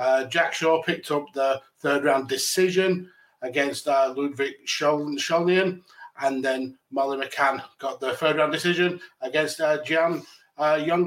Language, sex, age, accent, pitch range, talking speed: English, male, 30-49, British, 140-170 Hz, 140 wpm